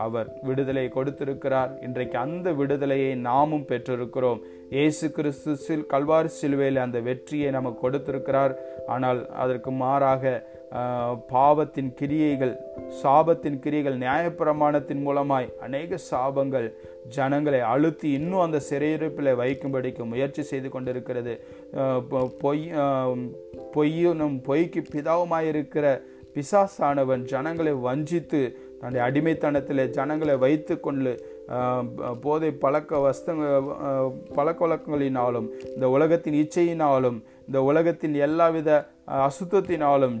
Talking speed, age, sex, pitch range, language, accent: 90 wpm, 30-49, male, 130-150 Hz, Tamil, native